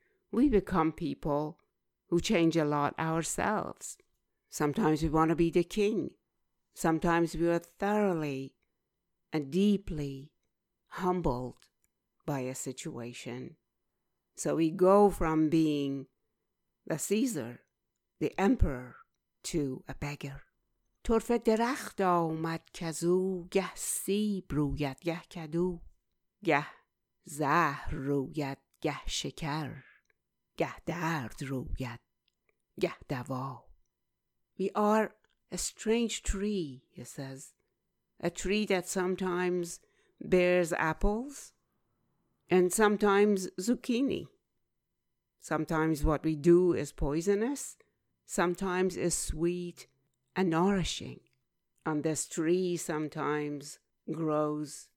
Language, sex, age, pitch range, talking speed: English, female, 60-79, 145-185 Hz, 85 wpm